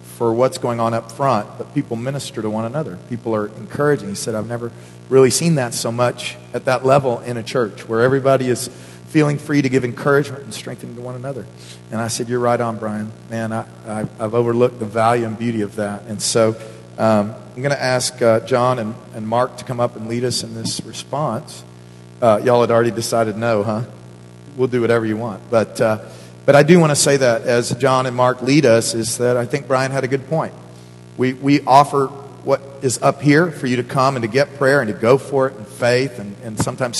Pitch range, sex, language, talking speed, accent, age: 110-130 Hz, male, English, 230 wpm, American, 40-59